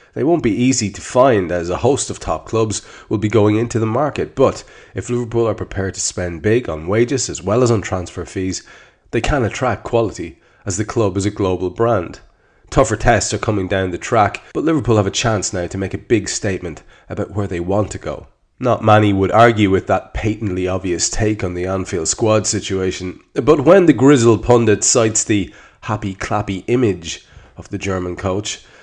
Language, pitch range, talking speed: English, 90-110 Hz, 200 wpm